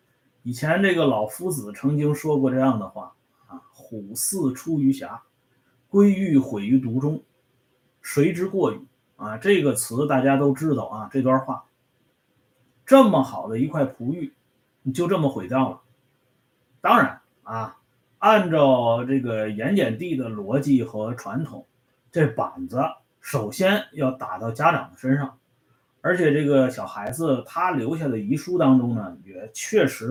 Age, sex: 30-49, male